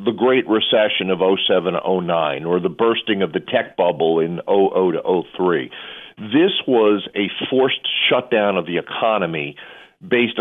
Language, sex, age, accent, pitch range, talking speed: English, male, 50-69, American, 100-125 Hz, 150 wpm